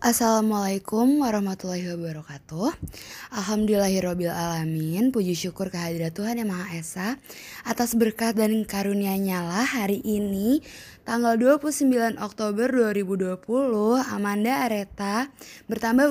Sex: female